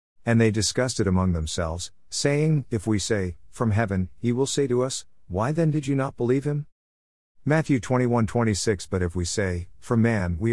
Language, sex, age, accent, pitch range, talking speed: English, male, 50-69, American, 90-125 Hz, 195 wpm